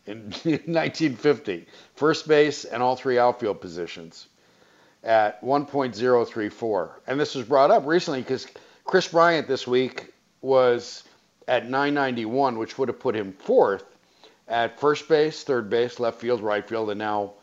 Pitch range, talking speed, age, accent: 105-130 Hz, 145 wpm, 50-69, American